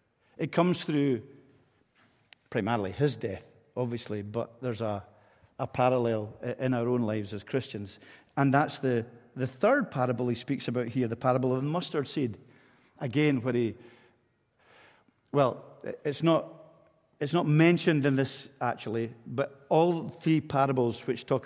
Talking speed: 145 wpm